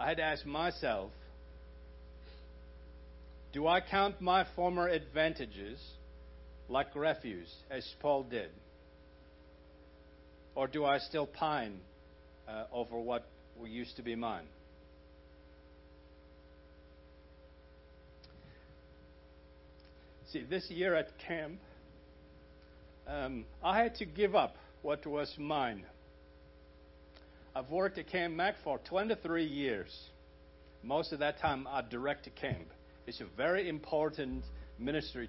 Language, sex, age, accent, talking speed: English, male, 60-79, American, 105 wpm